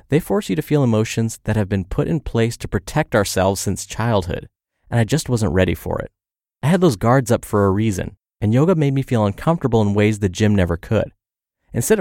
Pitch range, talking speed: 100-135 Hz, 225 wpm